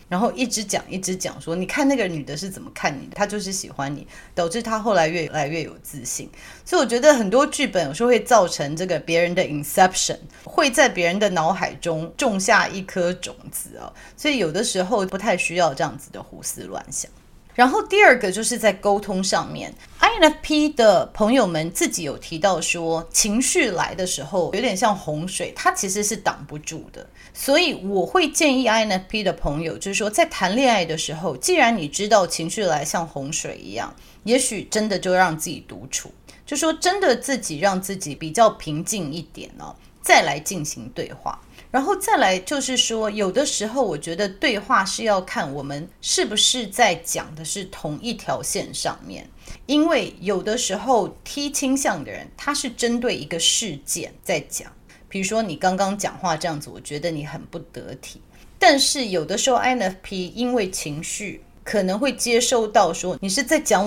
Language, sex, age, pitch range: Chinese, female, 30-49, 175-250 Hz